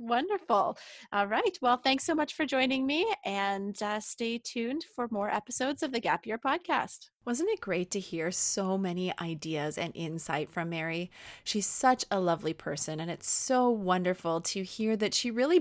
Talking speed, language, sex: 185 wpm, English, female